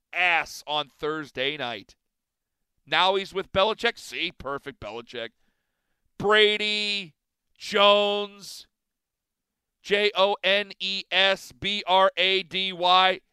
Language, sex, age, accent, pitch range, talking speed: English, male, 40-59, American, 165-210 Hz, 65 wpm